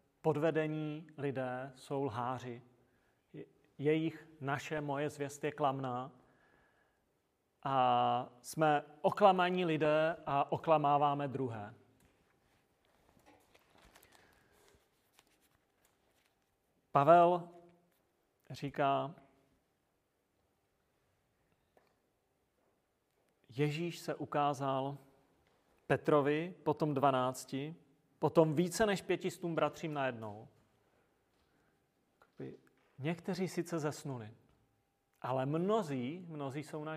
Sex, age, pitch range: male, 40-59, 130-160 Hz